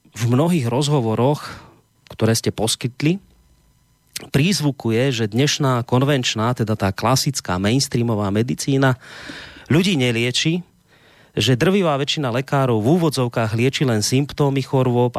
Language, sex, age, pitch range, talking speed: Slovak, male, 30-49, 115-145 Hz, 105 wpm